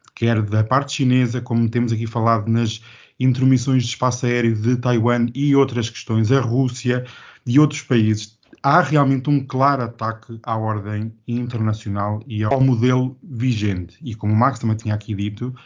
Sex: male